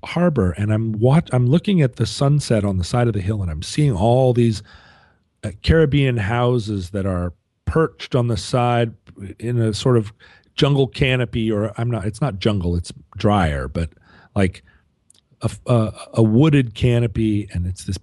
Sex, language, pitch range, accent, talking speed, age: male, English, 95-130 Hz, American, 175 wpm, 40-59